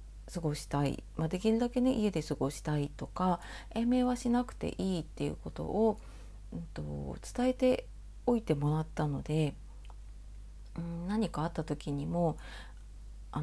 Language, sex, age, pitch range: Japanese, female, 30-49, 140-195 Hz